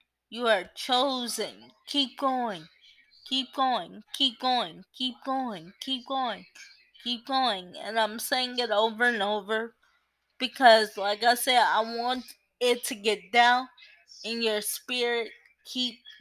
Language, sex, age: English, female, 20-39